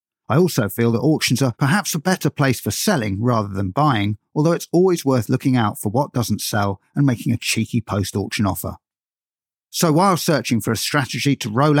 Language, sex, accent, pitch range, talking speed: English, male, British, 105-145 Hz, 200 wpm